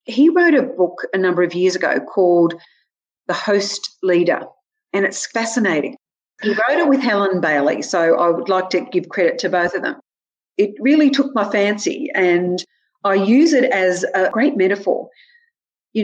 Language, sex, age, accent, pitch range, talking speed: English, female, 40-59, Australian, 185-265 Hz, 175 wpm